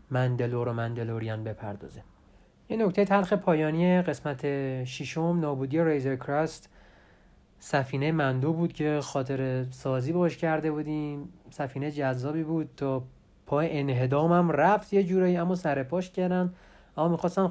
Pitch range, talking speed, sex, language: 130-165 Hz, 125 wpm, male, Persian